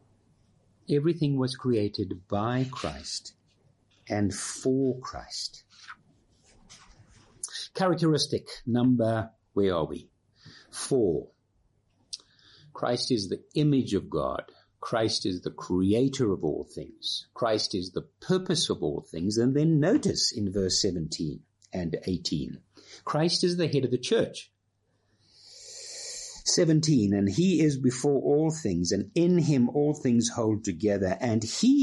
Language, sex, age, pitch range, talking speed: English, male, 50-69, 110-160 Hz, 125 wpm